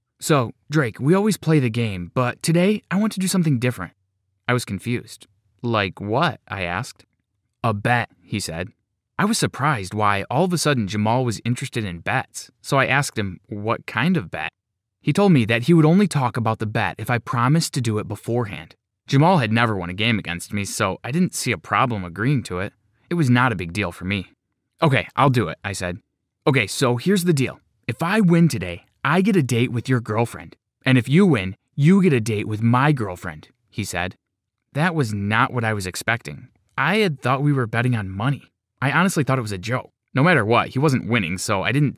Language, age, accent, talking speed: English, 20-39, American, 225 wpm